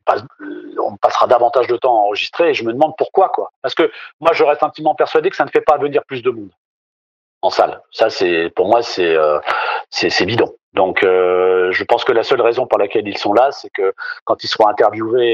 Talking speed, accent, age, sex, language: 230 wpm, French, 40-59, male, French